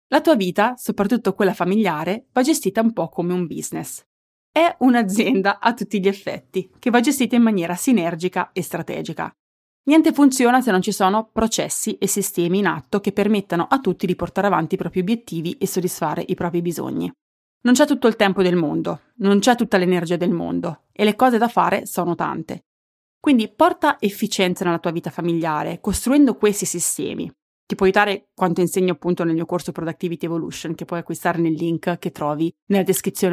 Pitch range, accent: 175-230 Hz, native